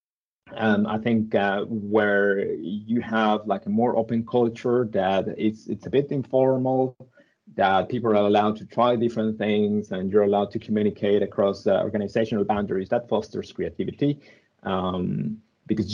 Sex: male